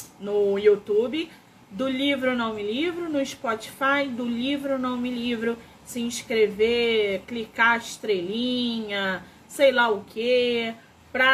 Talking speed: 125 wpm